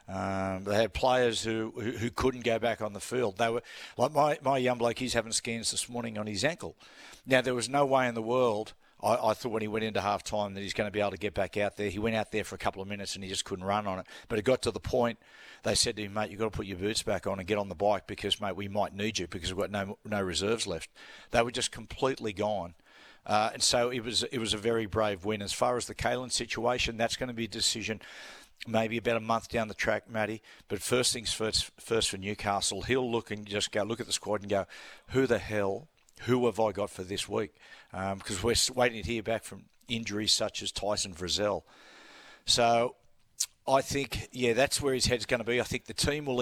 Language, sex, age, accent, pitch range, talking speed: English, male, 50-69, Australian, 100-120 Hz, 260 wpm